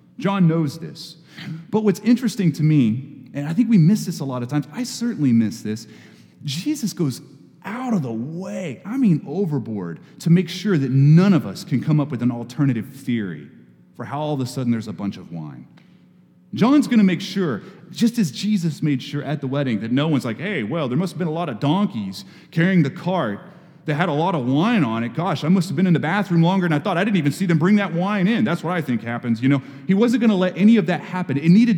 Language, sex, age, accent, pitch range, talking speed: English, male, 30-49, American, 140-190 Hz, 250 wpm